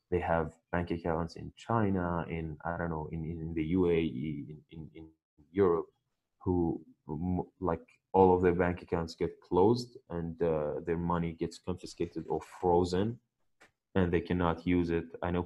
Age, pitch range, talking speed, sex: 20-39, 85-95 Hz, 165 wpm, male